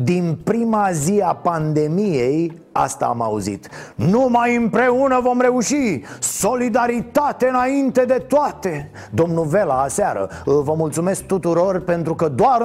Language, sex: Romanian, male